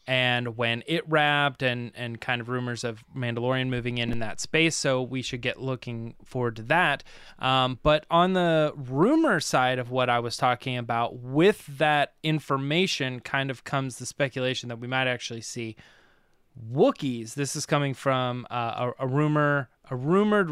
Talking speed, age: 175 wpm, 20-39